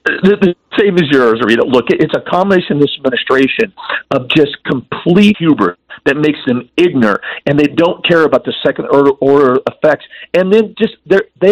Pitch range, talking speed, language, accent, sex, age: 145-195 Hz, 195 wpm, English, American, male, 50-69